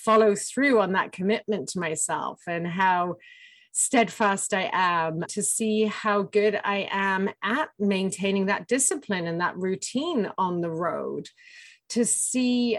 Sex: female